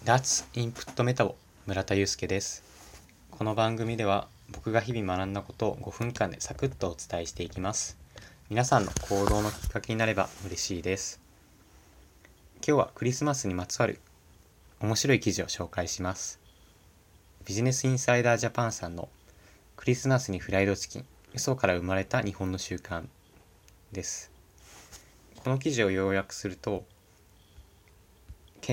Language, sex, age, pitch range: Japanese, male, 20-39, 90-115 Hz